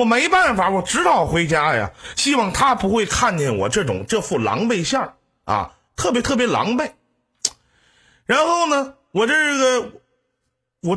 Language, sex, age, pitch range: Chinese, male, 50-69, 190-275 Hz